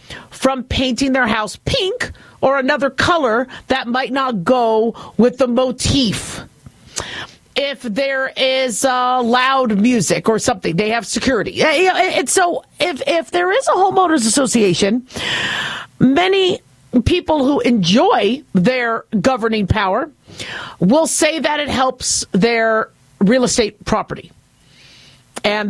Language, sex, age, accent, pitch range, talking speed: English, female, 50-69, American, 215-275 Hz, 120 wpm